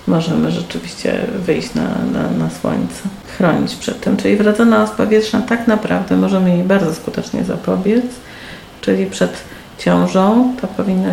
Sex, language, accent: female, Polish, native